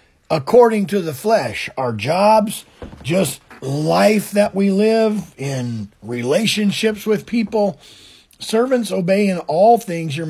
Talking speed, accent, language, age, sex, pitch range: 120 wpm, American, English, 40-59, male, 135-215 Hz